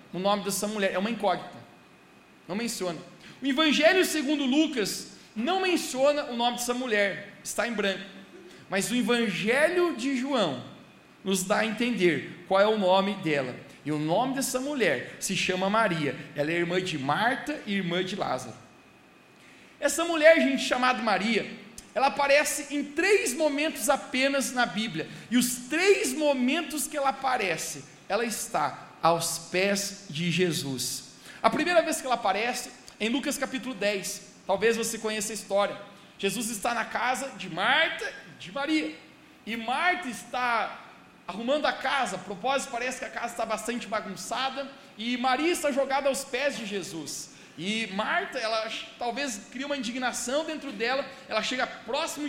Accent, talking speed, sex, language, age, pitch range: Brazilian, 155 wpm, male, Portuguese, 40-59, 200-275 Hz